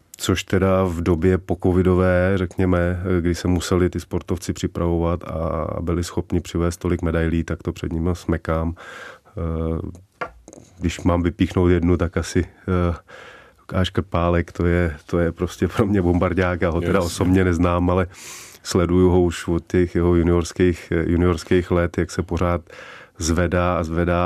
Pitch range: 85-90 Hz